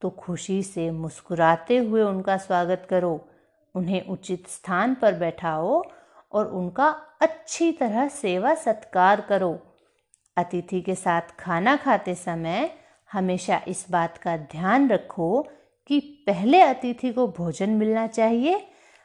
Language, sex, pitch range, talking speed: Hindi, female, 175-250 Hz, 125 wpm